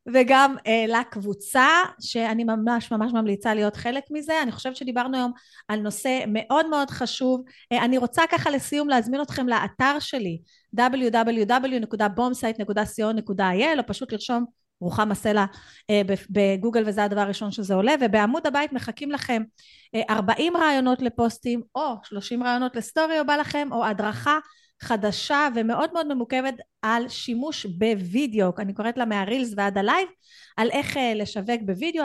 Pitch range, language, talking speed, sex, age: 220-285 Hz, Hebrew, 140 wpm, female, 30-49